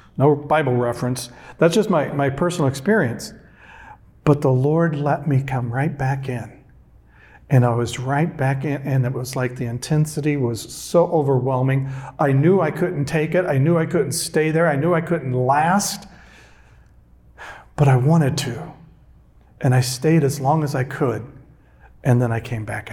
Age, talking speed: 50-69, 175 wpm